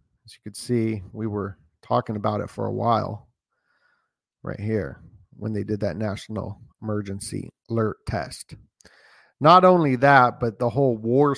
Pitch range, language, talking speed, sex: 110-135 Hz, English, 155 wpm, male